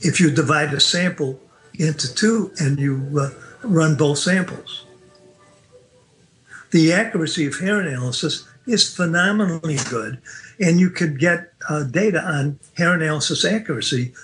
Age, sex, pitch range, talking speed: 50-69, male, 145-180 Hz, 130 wpm